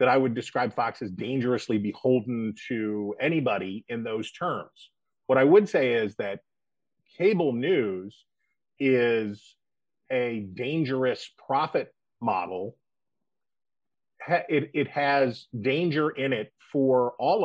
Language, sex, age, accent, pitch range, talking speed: English, male, 40-59, American, 120-155 Hz, 115 wpm